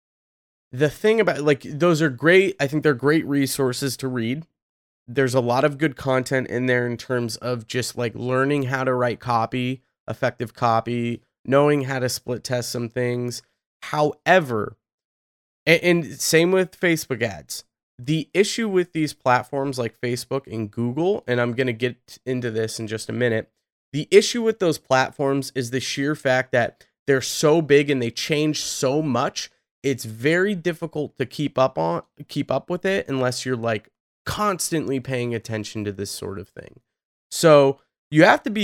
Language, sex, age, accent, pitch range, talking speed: English, male, 20-39, American, 120-150 Hz, 175 wpm